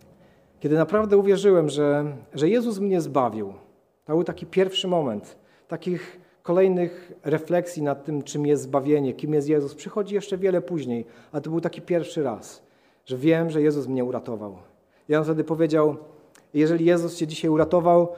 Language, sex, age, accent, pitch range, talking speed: Polish, male, 40-59, native, 150-195 Hz, 160 wpm